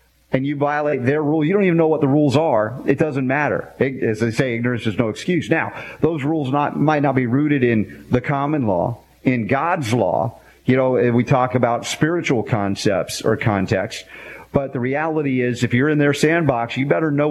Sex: male